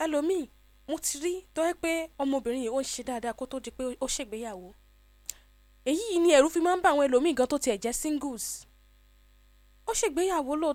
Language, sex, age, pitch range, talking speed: English, female, 10-29, 240-325 Hz, 155 wpm